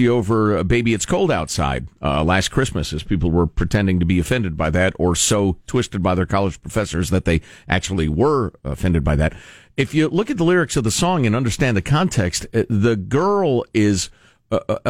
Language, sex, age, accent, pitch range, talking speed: English, male, 50-69, American, 100-150 Hz, 195 wpm